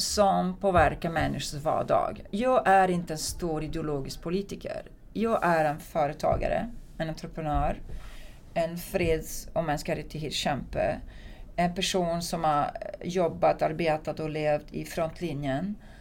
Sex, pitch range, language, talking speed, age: female, 155-190 Hz, Swedish, 115 wpm, 40-59